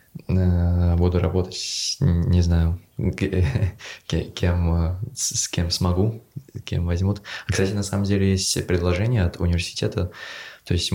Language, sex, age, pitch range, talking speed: Russian, male, 20-39, 85-100 Hz, 110 wpm